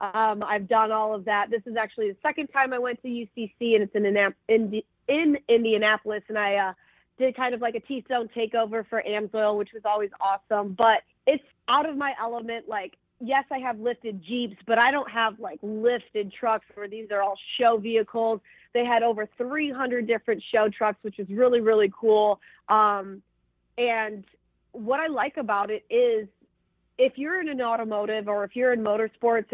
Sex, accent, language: female, American, English